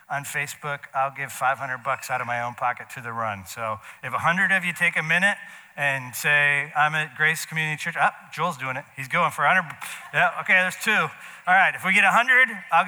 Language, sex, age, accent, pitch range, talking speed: English, male, 40-59, American, 145-185 Hz, 230 wpm